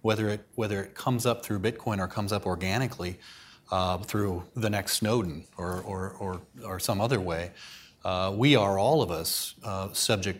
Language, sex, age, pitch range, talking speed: English, male, 30-49, 90-115 Hz, 185 wpm